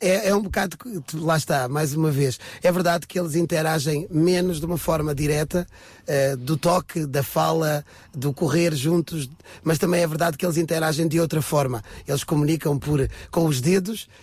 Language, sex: Portuguese, male